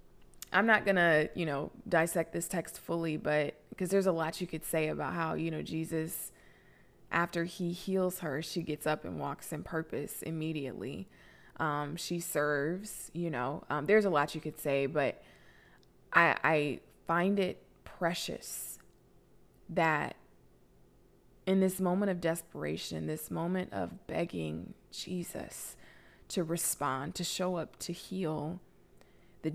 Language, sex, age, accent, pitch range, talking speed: English, female, 20-39, American, 145-180 Hz, 145 wpm